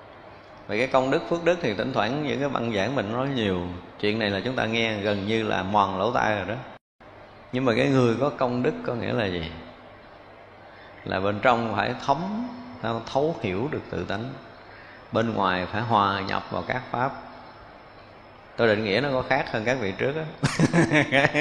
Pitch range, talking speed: 105-140 Hz, 200 wpm